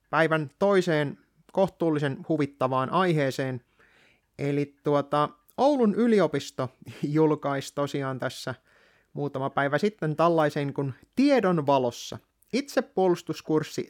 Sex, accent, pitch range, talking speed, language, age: male, native, 140-200 Hz, 85 wpm, Finnish, 30-49